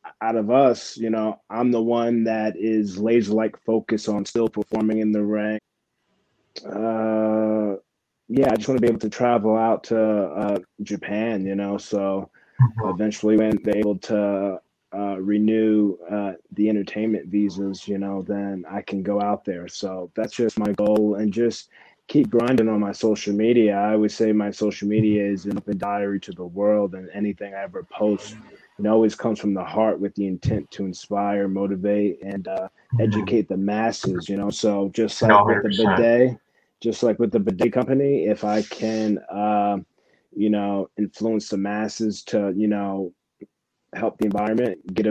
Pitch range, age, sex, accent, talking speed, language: 100-110 Hz, 20-39, male, American, 175 wpm, English